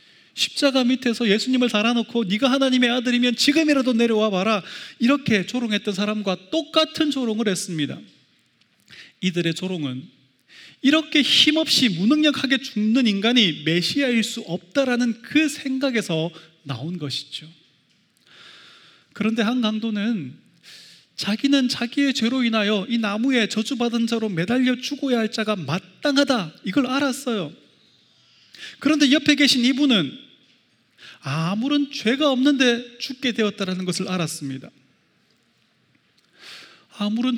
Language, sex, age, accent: Korean, male, 30-49, native